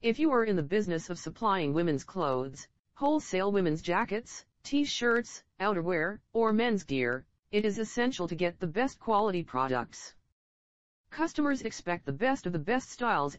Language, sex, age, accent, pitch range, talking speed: English, female, 40-59, American, 145-215 Hz, 155 wpm